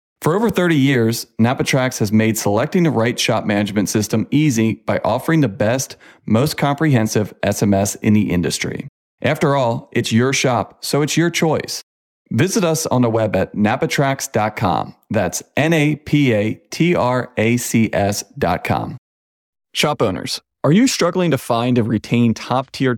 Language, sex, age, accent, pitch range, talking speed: English, male, 40-59, American, 110-150 Hz, 135 wpm